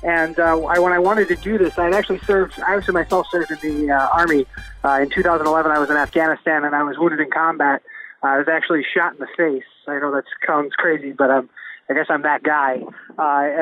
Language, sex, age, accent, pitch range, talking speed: English, male, 20-39, American, 150-185 Hz, 240 wpm